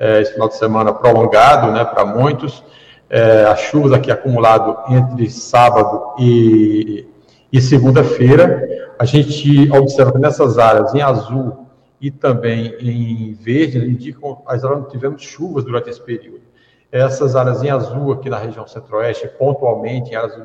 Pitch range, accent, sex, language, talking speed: 115-145 Hz, Brazilian, male, Portuguese, 145 wpm